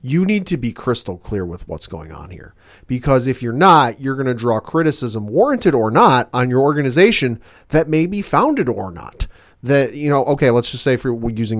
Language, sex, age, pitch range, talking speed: English, male, 30-49, 115-160 Hz, 210 wpm